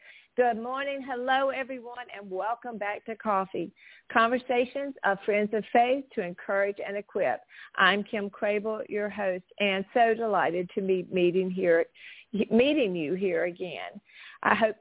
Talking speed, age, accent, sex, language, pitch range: 140 wpm, 50-69, American, female, English, 200-250 Hz